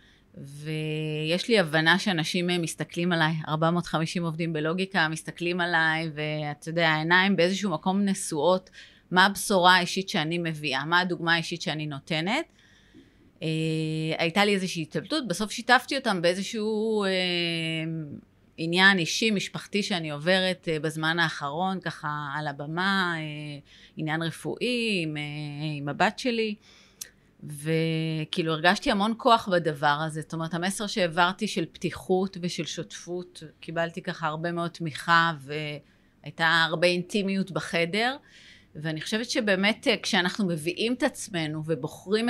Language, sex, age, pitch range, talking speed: Hebrew, female, 30-49, 160-195 Hz, 115 wpm